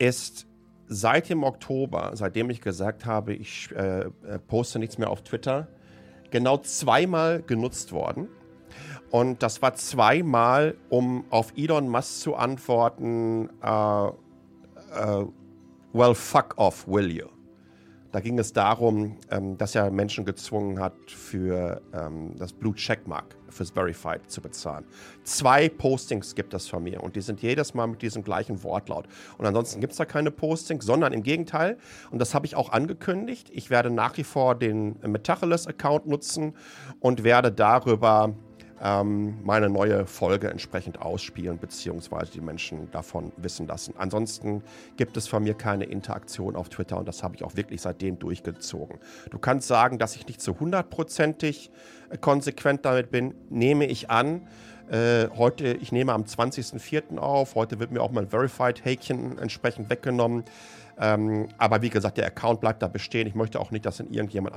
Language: German